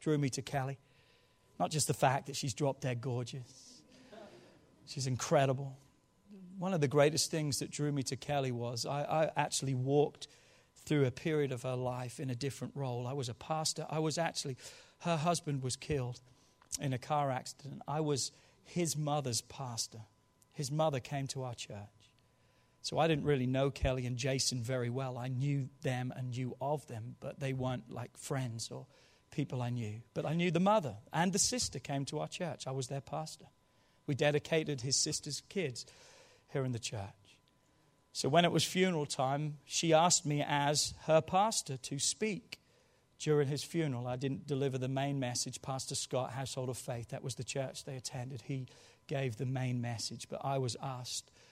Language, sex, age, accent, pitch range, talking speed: English, male, 40-59, British, 125-150 Hz, 185 wpm